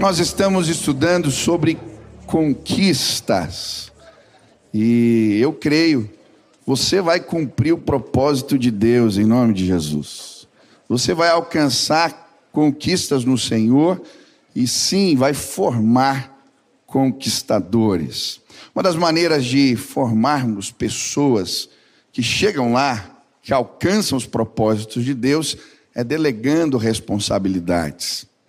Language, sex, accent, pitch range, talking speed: Portuguese, male, Brazilian, 115-160 Hz, 100 wpm